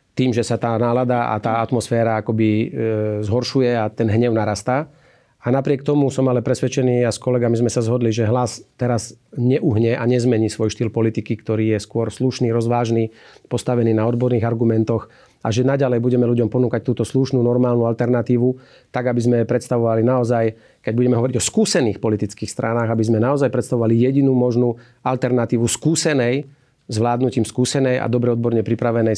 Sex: male